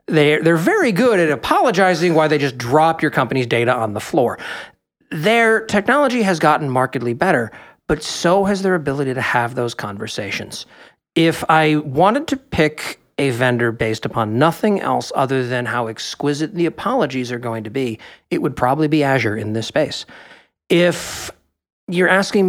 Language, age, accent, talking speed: English, 40-59, American, 165 wpm